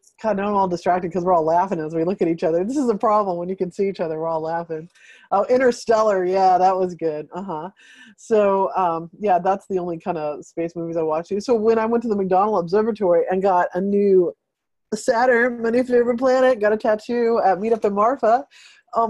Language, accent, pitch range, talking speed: English, American, 175-220 Hz, 230 wpm